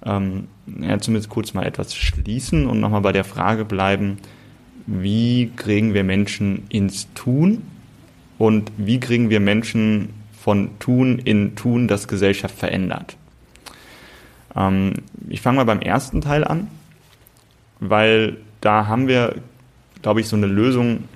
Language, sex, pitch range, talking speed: German, male, 100-125 Hz, 135 wpm